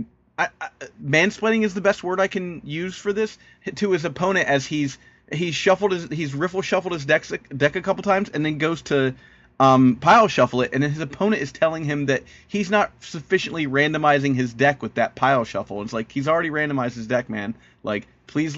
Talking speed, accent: 215 wpm, American